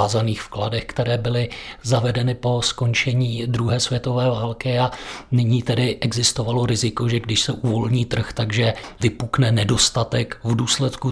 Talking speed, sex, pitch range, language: 130 wpm, male, 110-125 Hz, Czech